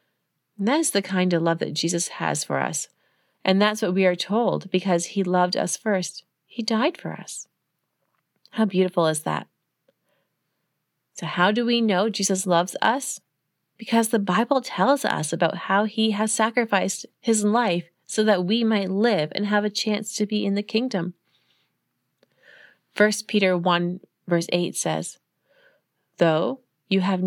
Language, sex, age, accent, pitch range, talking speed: English, female, 30-49, American, 175-220 Hz, 160 wpm